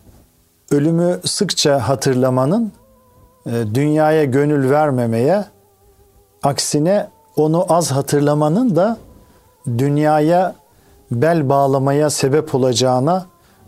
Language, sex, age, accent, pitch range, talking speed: Turkish, male, 50-69, native, 115-155 Hz, 70 wpm